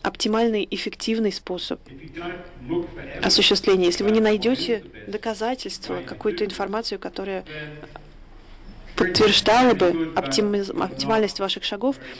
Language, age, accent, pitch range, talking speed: Russian, 20-39, native, 175-225 Hz, 85 wpm